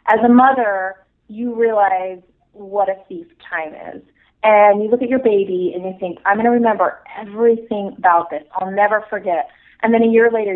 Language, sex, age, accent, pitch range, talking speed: English, female, 30-49, American, 185-230 Hz, 195 wpm